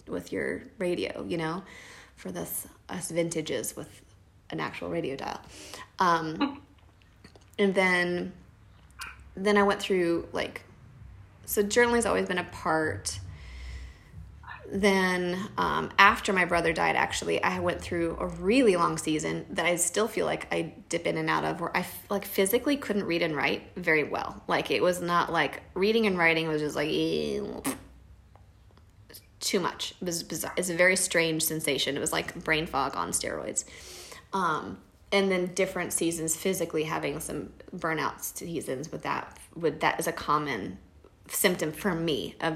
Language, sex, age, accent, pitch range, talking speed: English, female, 20-39, American, 150-180 Hz, 160 wpm